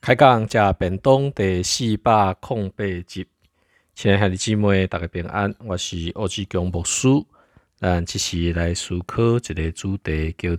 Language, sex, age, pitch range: Chinese, male, 50-69, 80-110 Hz